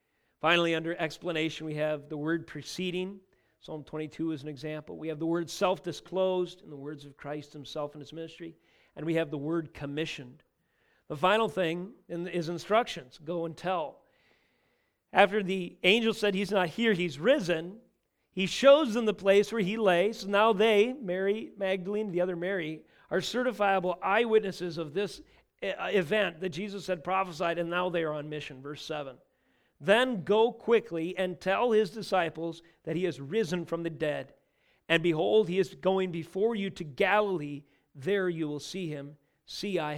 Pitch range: 160-200 Hz